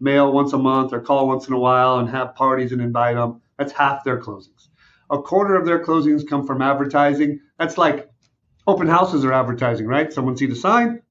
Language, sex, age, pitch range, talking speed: English, male, 50-69, 125-150 Hz, 210 wpm